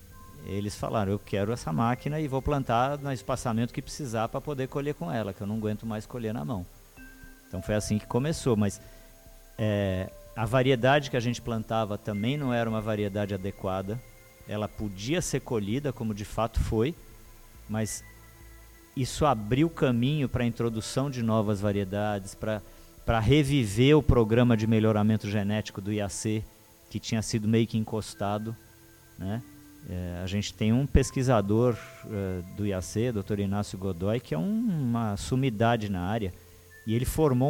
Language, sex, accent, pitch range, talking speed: Portuguese, male, Brazilian, 105-130 Hz, 160 wpm